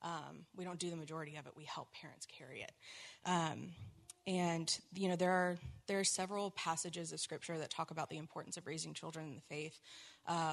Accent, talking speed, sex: American, 210 wpm, female